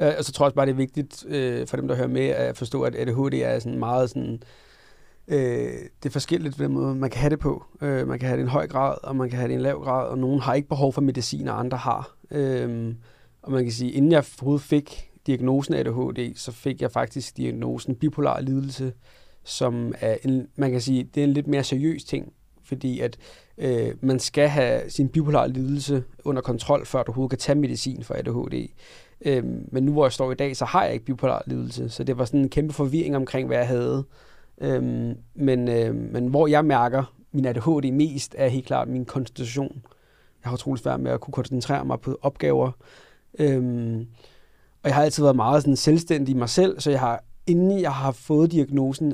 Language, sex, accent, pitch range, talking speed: Danish, male, native, 125-145 Hz, 215 wpm